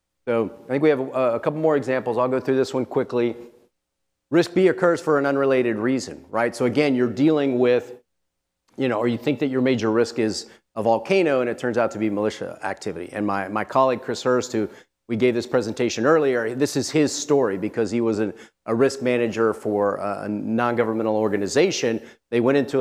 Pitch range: 110-135 Hz